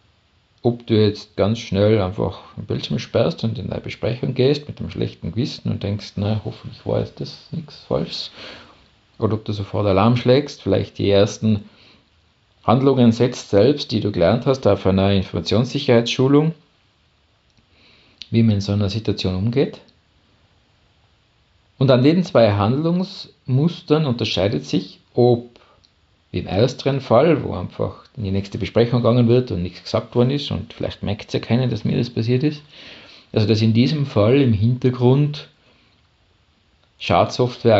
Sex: male